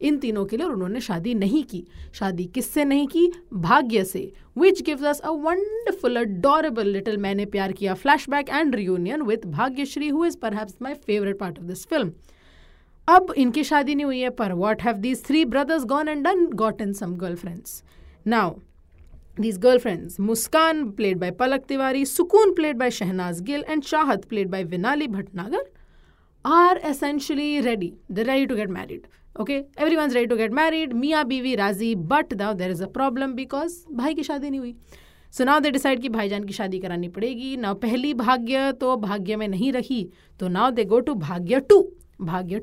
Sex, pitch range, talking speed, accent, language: female, 200-295 Hz, 150 wpm, Indian, English